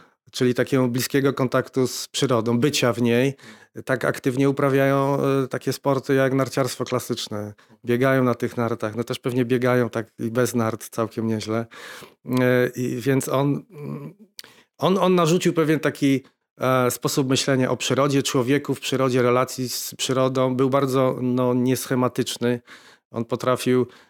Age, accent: 40-59, native